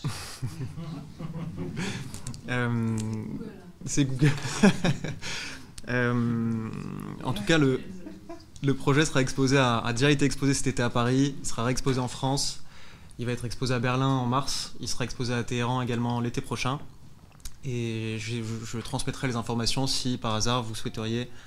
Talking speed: 150 wpm